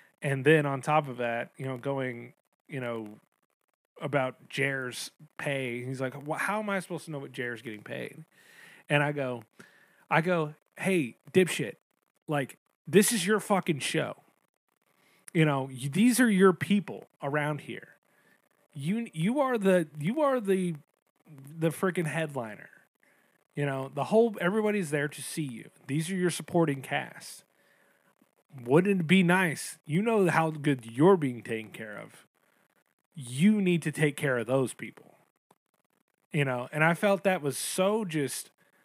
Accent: American